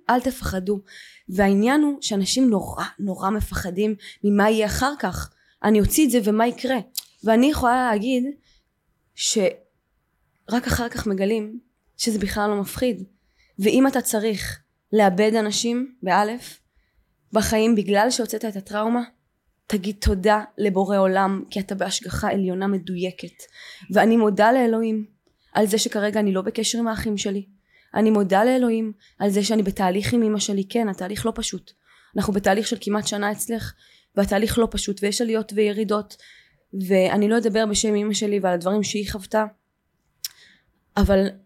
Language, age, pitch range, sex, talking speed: Hebrew, 20-39, 200-230 Hz, female, 140 wpm